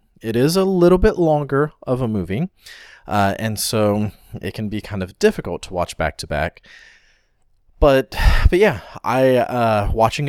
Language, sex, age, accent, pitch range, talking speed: English, male, 30-49, American, 95-140 Hz, 155 wpm